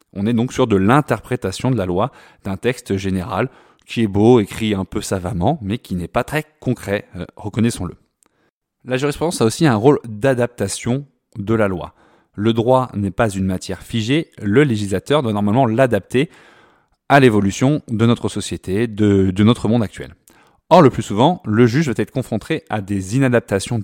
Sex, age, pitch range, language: male, 20-39, 100-130 Hz, French